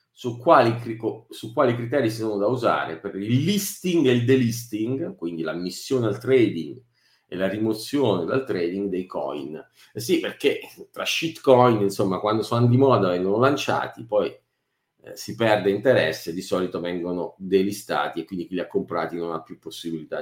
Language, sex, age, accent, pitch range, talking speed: Italian, male, 50-69, native, 100-130 Hz, 165 wpm